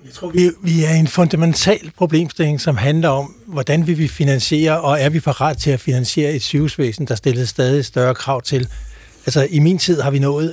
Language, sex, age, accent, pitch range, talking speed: Danish, male, 60-79, native, 130-150 Hz, 205 wpm